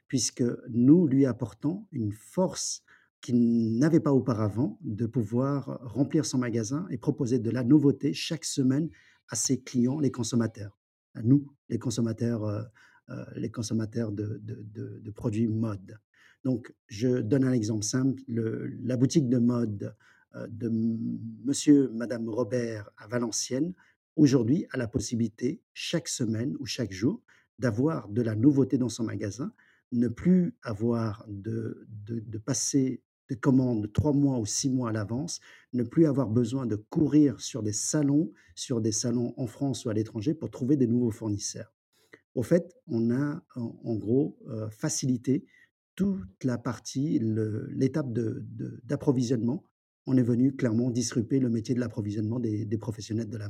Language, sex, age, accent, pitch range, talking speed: French, male, 50-69, French, 115-140 Hz, 160 wpm